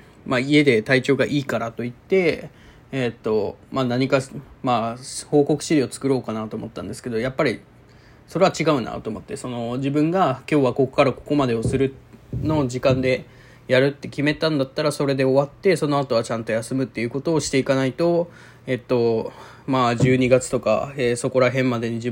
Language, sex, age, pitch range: Japanese, male, 20-39, 120-145 Hz